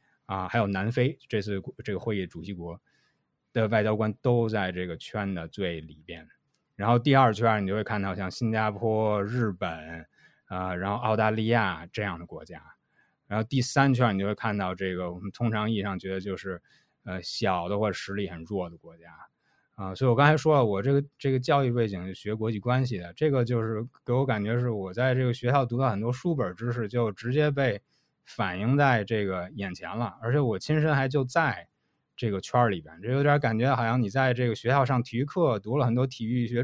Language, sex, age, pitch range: Chinese, male, 20-39, 100-135 Hz